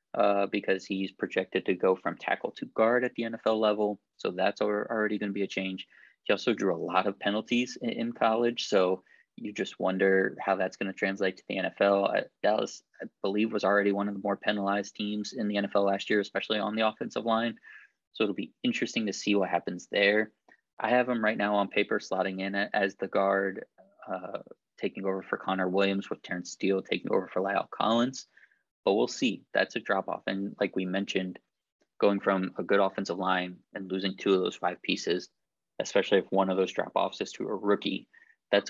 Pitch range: 95-105 Hz